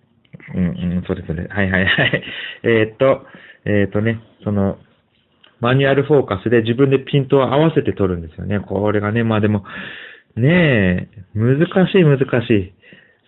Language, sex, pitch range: Japanese, male, 100-130 Hz